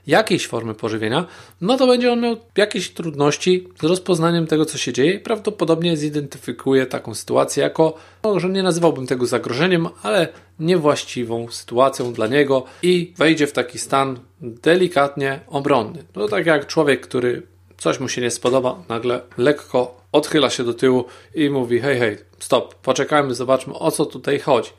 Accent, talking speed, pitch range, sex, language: native, 155 wpm, 125-160 Hz, male, Polish